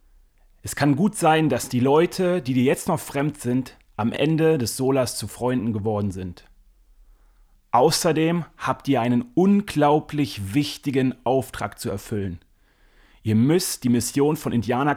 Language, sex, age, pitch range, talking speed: German, male, 30-49, 105-150 Hz, 145 wpm